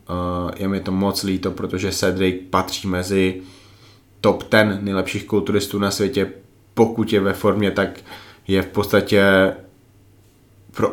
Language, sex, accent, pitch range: Czech, male, native, 95-105 Hz